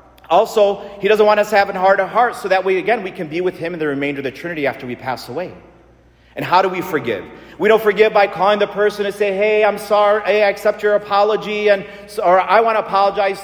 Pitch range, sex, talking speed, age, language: 180-235 Hz, male, 260 wpm, 40-59, English